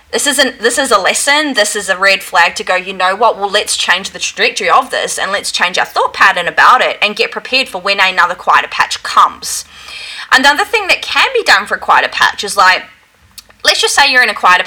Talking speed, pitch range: 240 wpm, 195-285 Hz